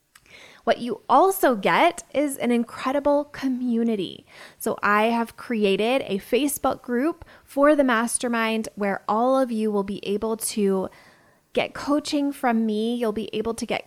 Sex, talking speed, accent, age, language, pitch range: female, 150 wpm, American, 20-39, English, 195-245 Hz